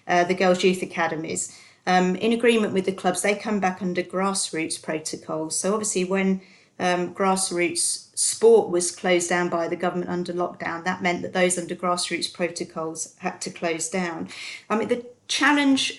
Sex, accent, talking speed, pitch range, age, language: female, British, 175 wpm, 175-190 Hz, 30-49, English